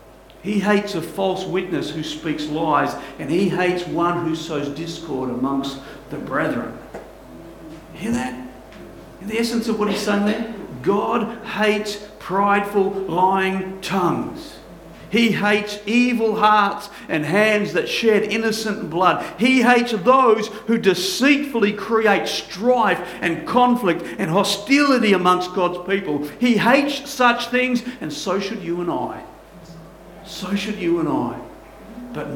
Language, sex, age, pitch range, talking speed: English, male, 50-69, 155-215 Hz, 135 wpm